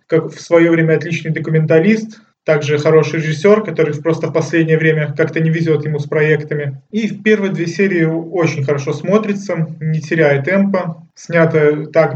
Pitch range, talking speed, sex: 150-170 Hz, 165 wpm, male